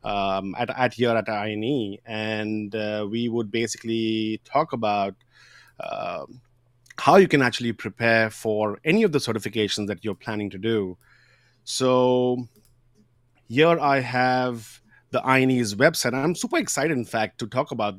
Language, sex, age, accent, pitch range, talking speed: English, male, 30-49, Indian, 105-125 Hz, 145 wpm